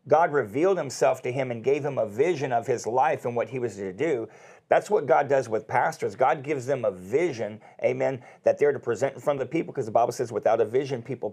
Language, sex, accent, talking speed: English, male, American, 255 wpm